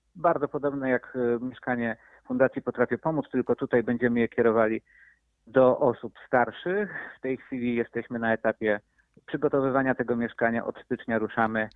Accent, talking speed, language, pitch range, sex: native, 140 wpm, Polish, 110-125 Hz, male